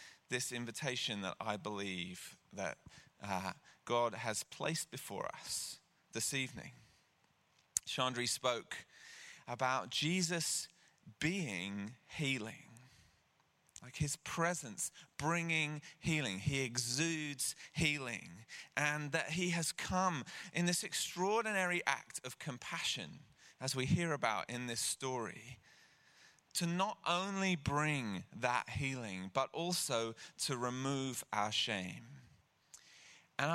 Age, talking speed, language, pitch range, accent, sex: 30-49, 105 wpm, English, 115-160 Hz, British, male